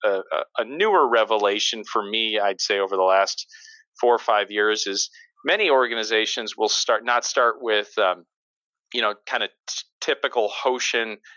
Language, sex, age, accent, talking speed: English, male, 40-59, American, 165 wpm